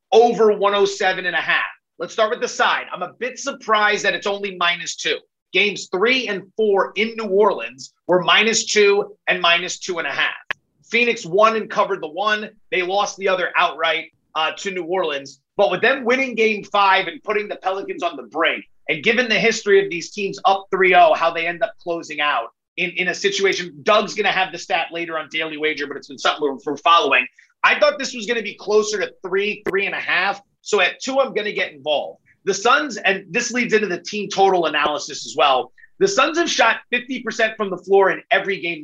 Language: English